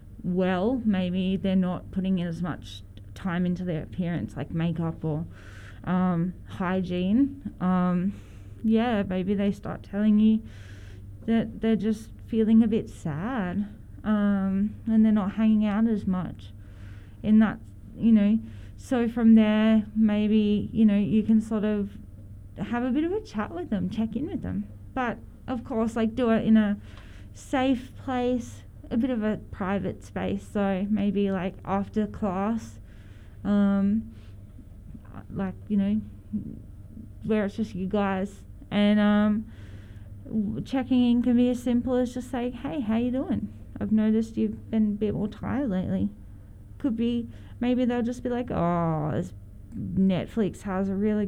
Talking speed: 155 wpm